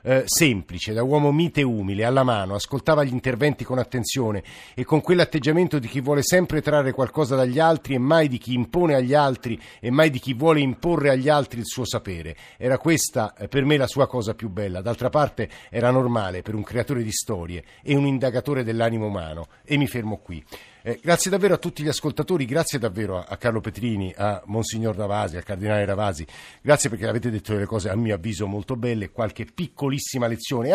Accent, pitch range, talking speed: native, 110-140 Hz, 205 wpm